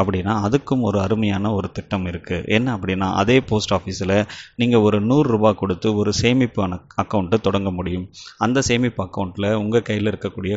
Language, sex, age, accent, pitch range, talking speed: Tamil, male, 30-49, native, 95-115 Hz, 155 wpm